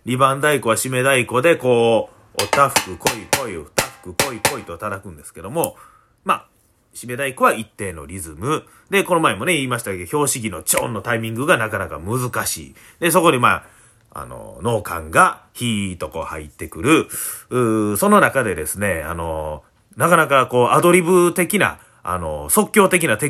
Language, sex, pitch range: Japanese, male, 105-170 Hz